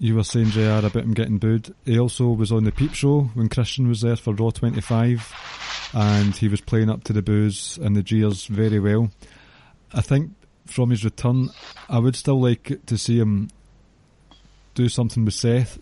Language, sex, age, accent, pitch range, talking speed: English, male, 30-49, British, 105-120 Hz, 195 wpm